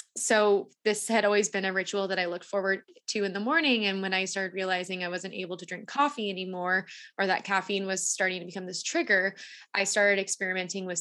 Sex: female